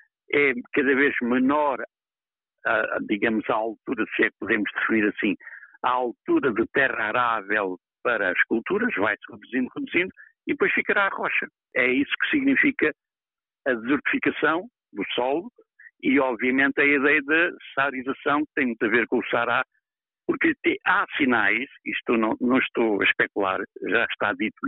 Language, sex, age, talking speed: Portuguese, male, 60-79, 150 wpm